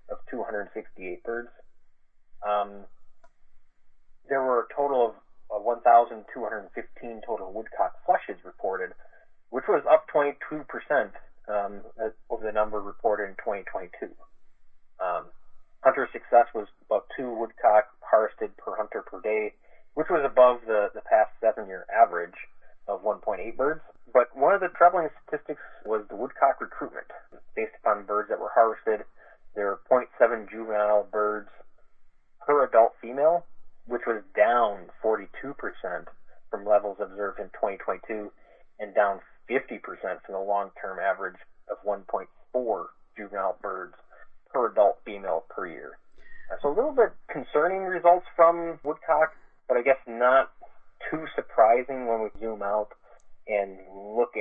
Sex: male